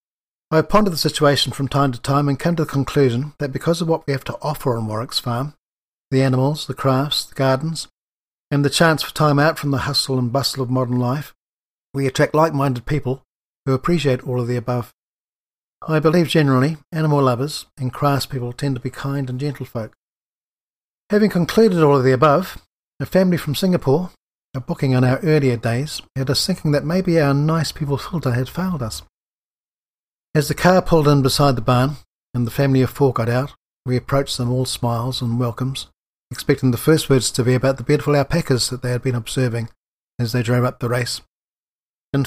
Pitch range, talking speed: 125-155 Hz, 200 wpm